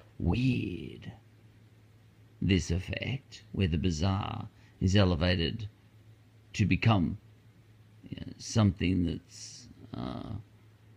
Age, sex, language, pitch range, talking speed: 50-69, male, English, 105-115 Hz, 80 wpm